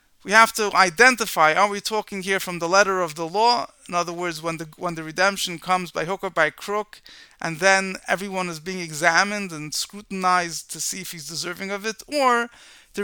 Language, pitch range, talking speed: English, 170-210 Hz, 205 wpm